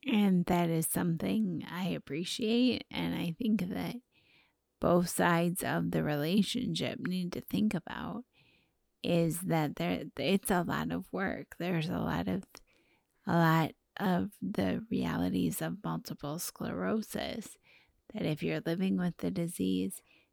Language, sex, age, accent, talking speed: English, female, 30-49, American, 135 wpm